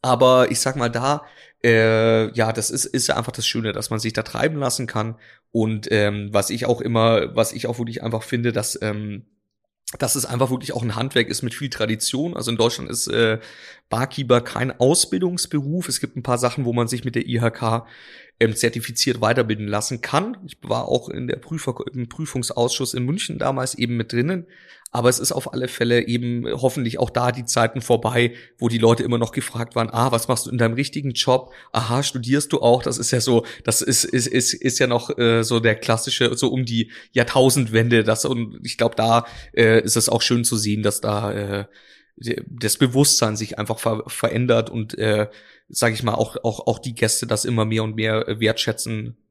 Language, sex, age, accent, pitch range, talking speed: German, male, 30-49, German, 110-130 Hz, 205 wpm